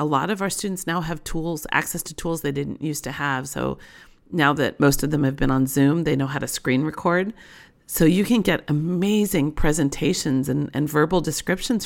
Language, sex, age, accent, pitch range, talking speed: English, female, 40-59, American, 135-165 Hz, 215 wpm